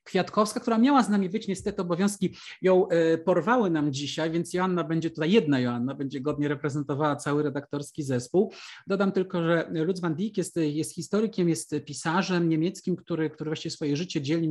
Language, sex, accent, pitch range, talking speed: Polish, male, native, 145-180 Hz, 175 wpm